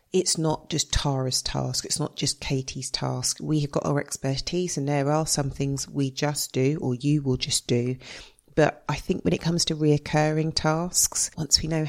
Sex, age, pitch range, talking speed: female, 40-59, 140-165 Hz, 200 wpm